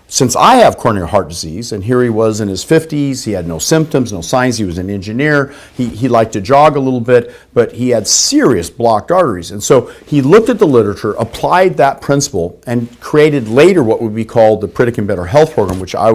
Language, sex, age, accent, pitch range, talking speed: English, male, 50-69, American, 115-145 Hz, 225 wpm